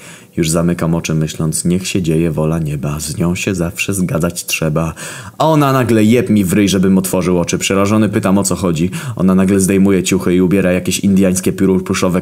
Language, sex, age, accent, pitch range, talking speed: Polish, male, 20-39, native, 85-95 Hz, 190 wpm